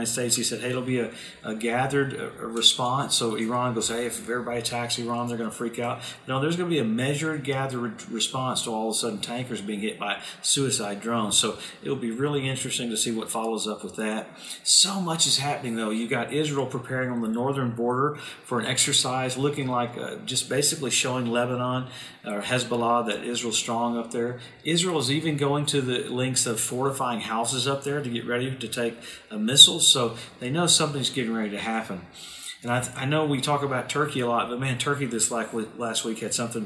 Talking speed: 215 wpm